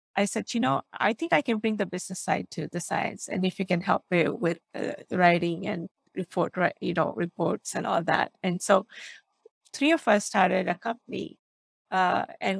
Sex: female